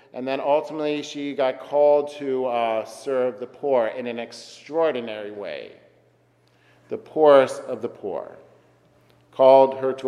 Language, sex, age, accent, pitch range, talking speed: English, male, 50-69, American, 120-145 Hz, 135 wpm